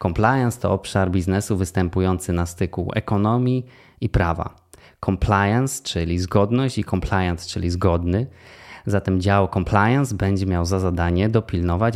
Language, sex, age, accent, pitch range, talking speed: Polish, male, 20-39, native, 95-110 Hz, 125 wpm